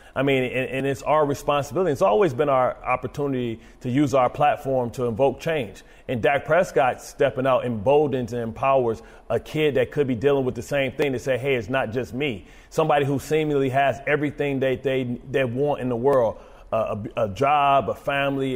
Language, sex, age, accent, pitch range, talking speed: English, male, 30-49, American, 130-145 Hz, 195 wpm